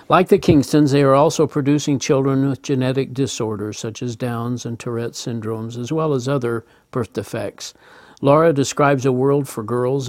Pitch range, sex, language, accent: 120-145 Hz, male, English, American